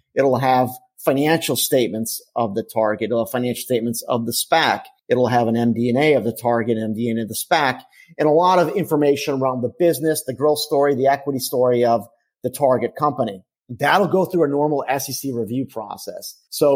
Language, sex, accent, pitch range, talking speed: English, male, American, 120-145 Hz, 185 wpm